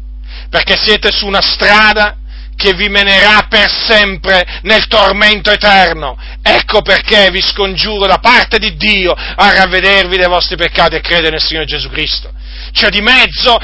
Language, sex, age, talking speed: Italian, male, 40-59, 155 wpm